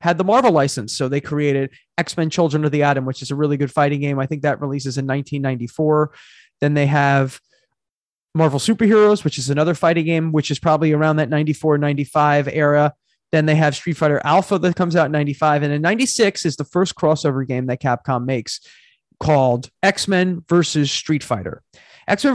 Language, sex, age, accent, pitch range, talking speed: English, male, 30-49, American, 145-175 Hz, 190 wpm